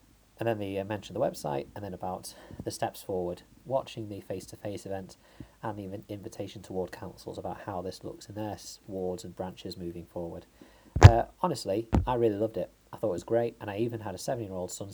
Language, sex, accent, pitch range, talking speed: English, male, British, 95-110 Hz, 210 wpm